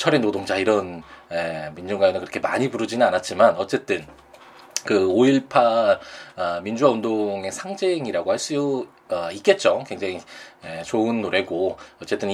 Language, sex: Korean, male